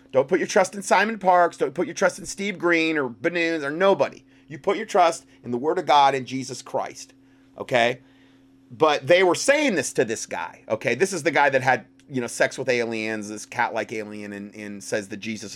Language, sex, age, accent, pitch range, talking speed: English, male, 30-49, American, 130-170 Hz, 230 wpm